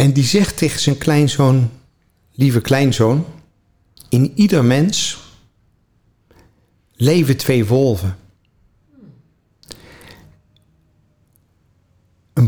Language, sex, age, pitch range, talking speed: Dutch, male, 50-69, 105-135 Hz, 70 wpm